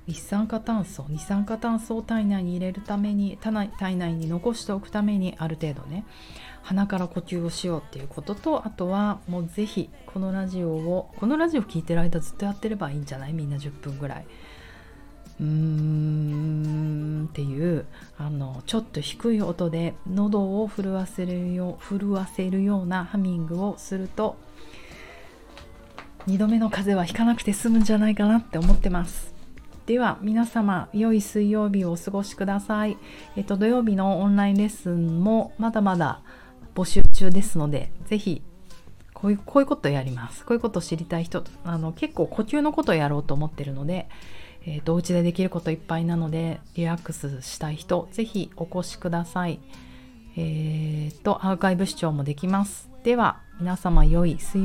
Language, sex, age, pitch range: Japanese, female, 40-59, 165-205 Hz